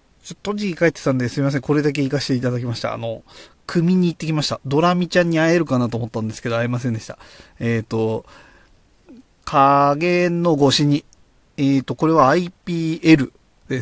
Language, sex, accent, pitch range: Japanese, male, native, 120-170 Hz